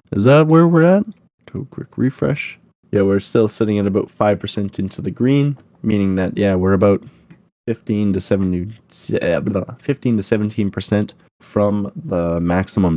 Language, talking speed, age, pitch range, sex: English, 155 wpm, 20-39, 85-105 Hz, male